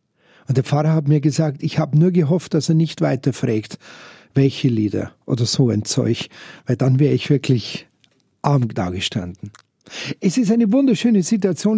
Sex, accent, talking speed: male, Austrian, 170 wpm